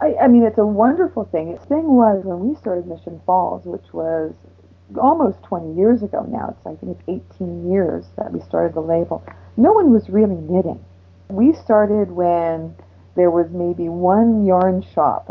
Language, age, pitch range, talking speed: English, 40-59, 160-200 Hz, 175 wpm